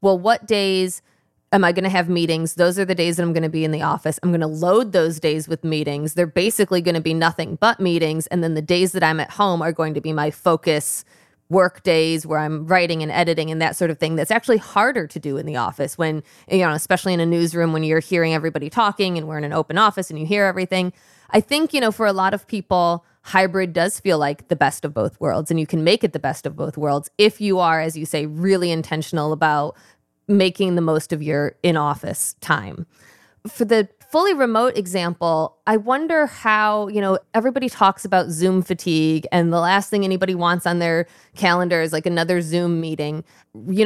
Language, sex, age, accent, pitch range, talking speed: English, female, 20-39, American, 160-195 Hz, 230 wpm